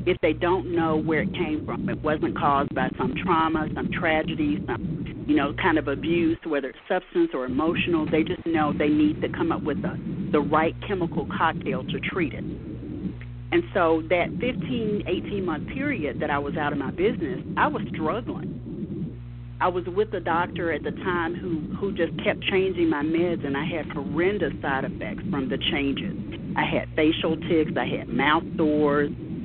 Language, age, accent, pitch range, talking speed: English, 40-59, American, 155-180 Hz, 190 wpm